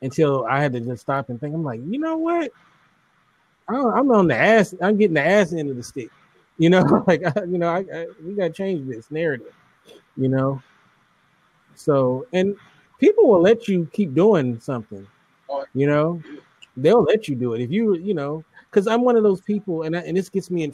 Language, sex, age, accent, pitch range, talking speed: English, male, 30-49, American, 135-180 Hz, 205 wpm